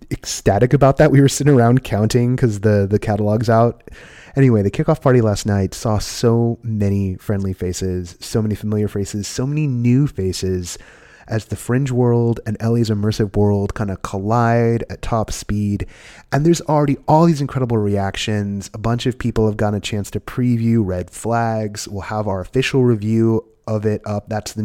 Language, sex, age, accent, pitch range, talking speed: English, male, 30-49, American, 105-125 Hz, 185 wpm